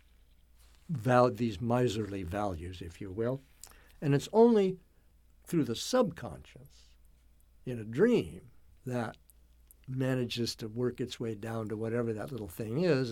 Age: 60-79